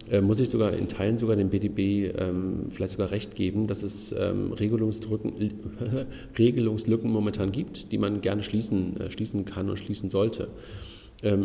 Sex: male